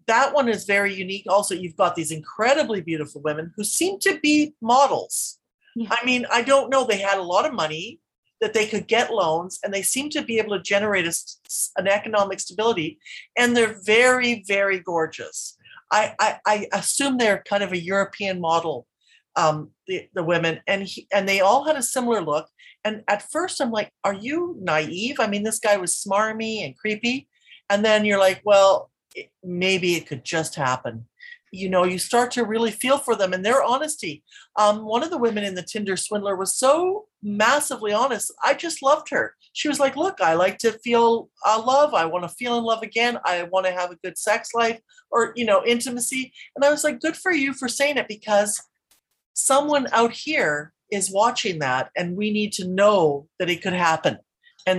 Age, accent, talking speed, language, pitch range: 50-69, American, 200 wpm, English, 190-255 Hz